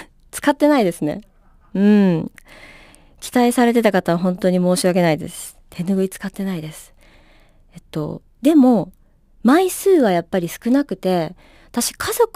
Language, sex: Japanese, female